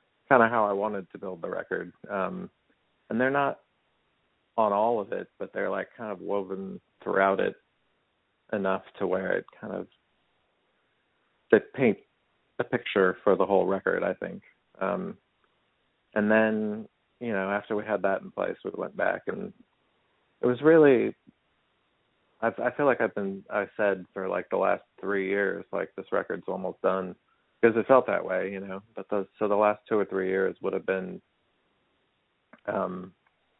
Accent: American